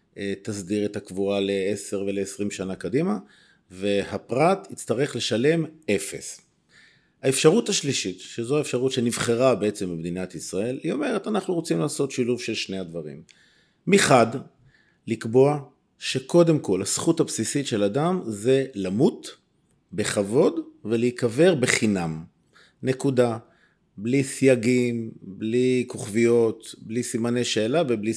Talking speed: 105 wpm